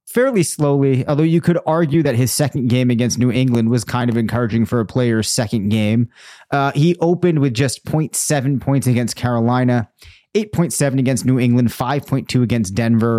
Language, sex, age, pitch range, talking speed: English, male, 30-49, 115-145 Hz, 175 wpm